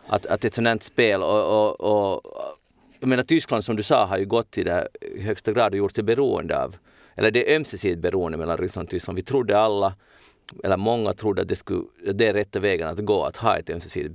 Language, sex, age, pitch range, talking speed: Swedish, male, 30-49, 100-125 Hz, 245 wpm